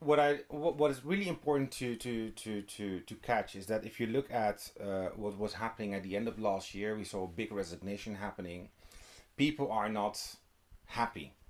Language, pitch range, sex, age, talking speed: English, 105-140 Hz, male, 30-49, 200 wpm